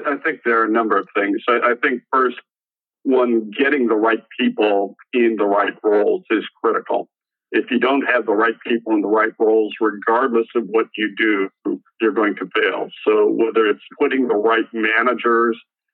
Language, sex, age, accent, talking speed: English, male, 50-69, American, 185 wpm